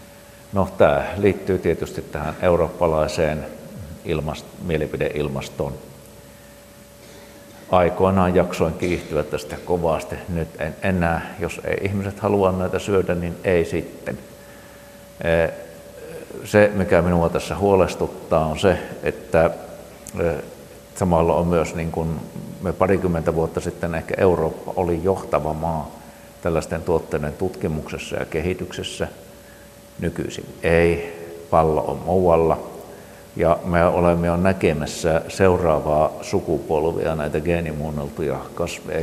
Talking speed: 100 wpm